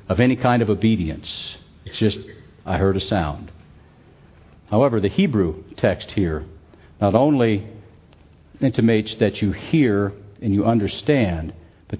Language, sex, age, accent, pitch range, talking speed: English, male, 60-79, American, 95-115 Hz, 130 wpm